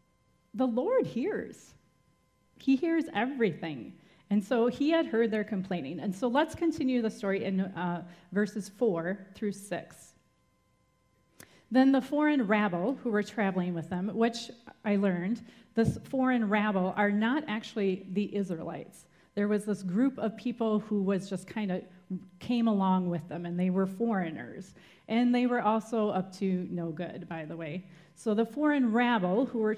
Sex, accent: female, American